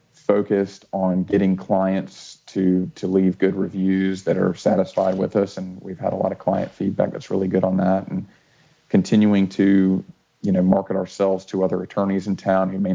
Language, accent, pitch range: English, American, 90-95 Hz